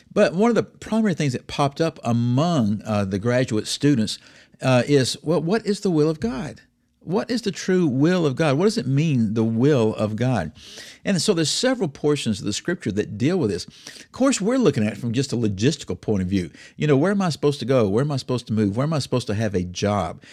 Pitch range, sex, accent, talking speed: 105-150 Hz, male, American, 250 wpm